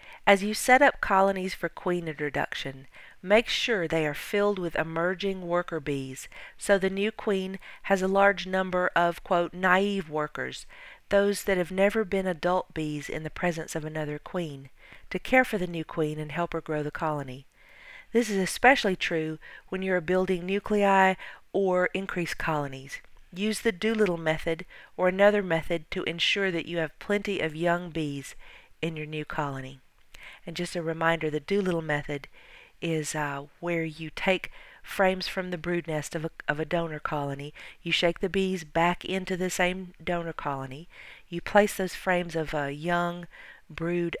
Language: English